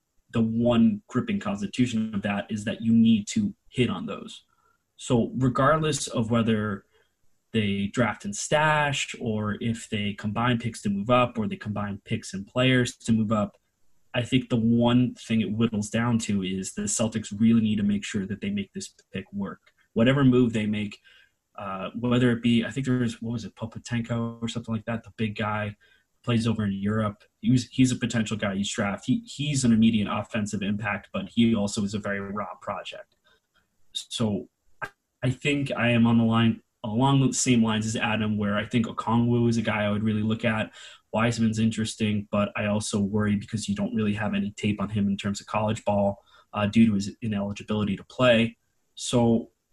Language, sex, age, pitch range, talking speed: English, male, 20-39, 105-120 Hz, 200 wpm